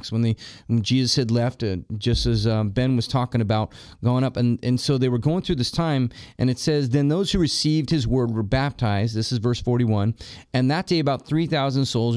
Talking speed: 220 wpm